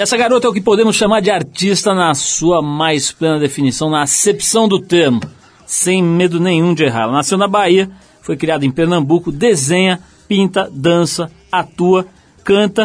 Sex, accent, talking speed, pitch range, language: male, Brazilian, 170 wpm, 140-185 Hz, Portuguese